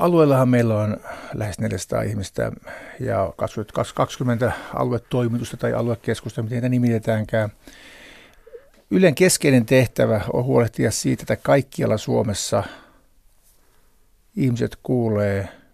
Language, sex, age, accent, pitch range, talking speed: Finnish, male, 60-79, native, 110-130 Hz, 100 wpm